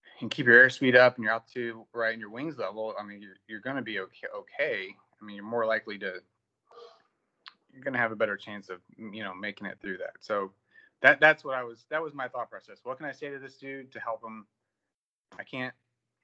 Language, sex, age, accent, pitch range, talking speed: English, male, 30-49, American, 110-140 Hz, 235 wpm